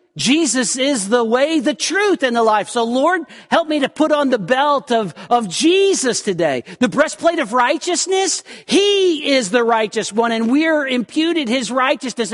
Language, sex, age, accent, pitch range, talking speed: English, male, 50-69, American, 235-330 Hz, 175 wpm